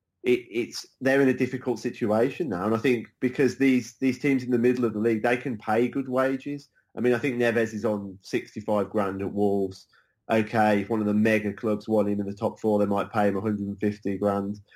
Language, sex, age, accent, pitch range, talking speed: English, male, 20-39, British, 105-120 Hz, 230 wpm